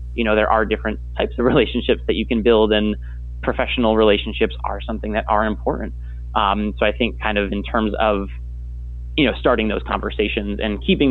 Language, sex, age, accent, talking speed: English, male, 20-39, American, 195 wpm